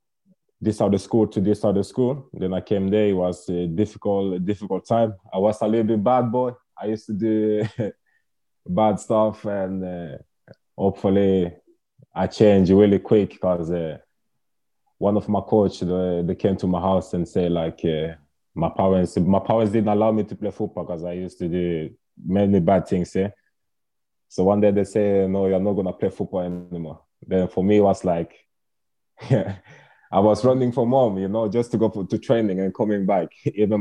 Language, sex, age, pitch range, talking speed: Finnish, male, 20-39, 90-110 Hz, 190 wpm